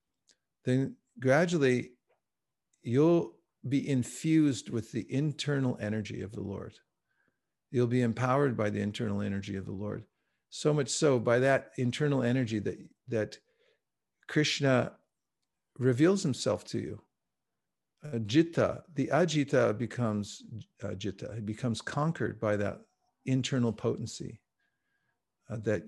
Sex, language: male, English